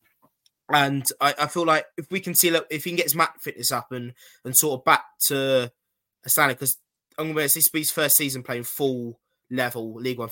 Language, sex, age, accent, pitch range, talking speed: English, male, 20-39, British, 125-150 Hz, 215 wpm